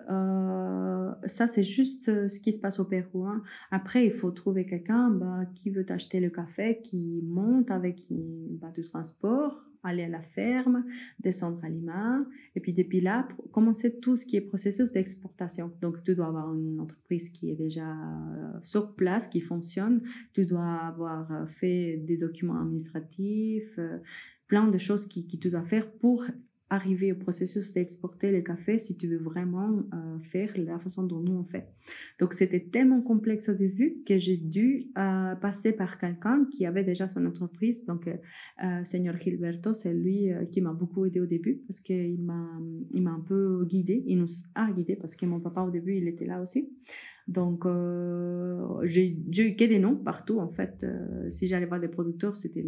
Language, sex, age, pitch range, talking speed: French, female, 30-49, 170-205 Hz, 190 wpm